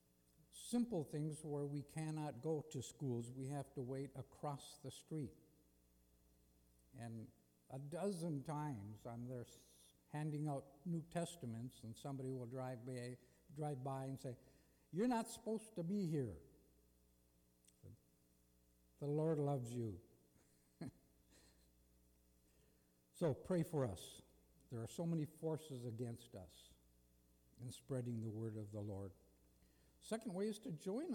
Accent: American